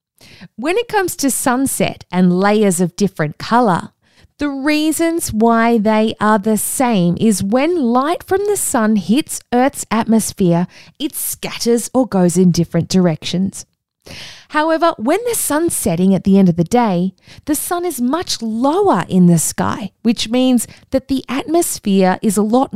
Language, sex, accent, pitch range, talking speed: English, female, Australian, 190-290 Hz, 160 wpm